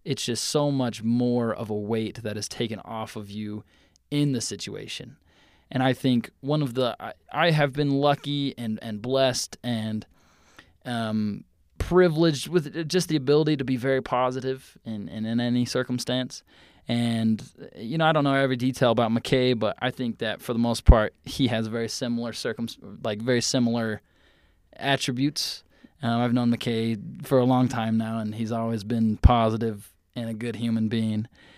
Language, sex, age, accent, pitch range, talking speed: English, male, 20-39, American, 110-135 Hz, 175 wpm